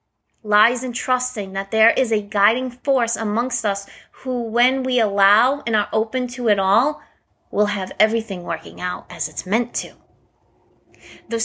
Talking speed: 160 wpm